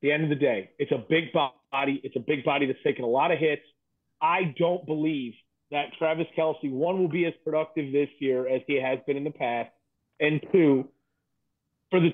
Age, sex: 30-49, male